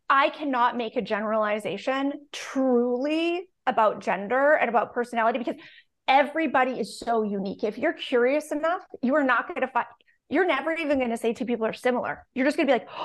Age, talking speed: 30-49, 195 wpm